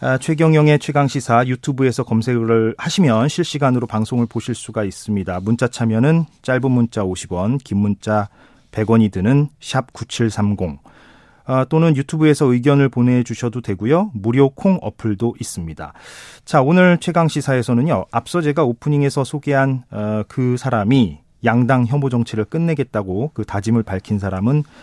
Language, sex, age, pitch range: Korean, male, 40-59, 110-145 Hz